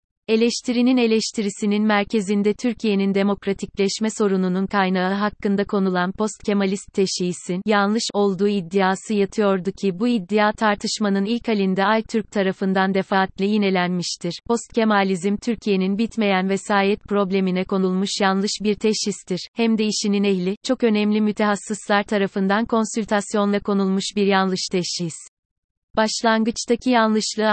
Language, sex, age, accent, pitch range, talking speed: Turkish, female, 30-49, native, 190-220 Hz, 115 wpm